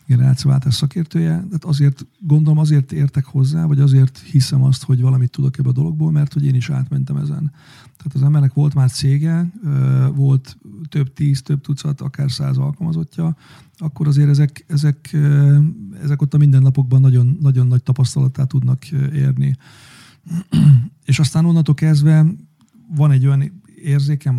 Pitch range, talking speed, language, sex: 135-150 Hz, 150 wpm, Hungarian, male